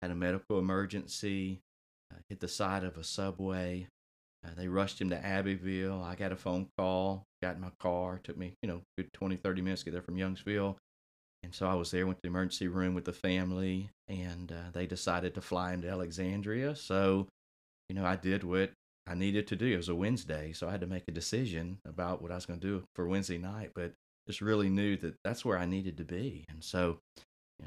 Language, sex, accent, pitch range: English, male, American, 85-95 Hz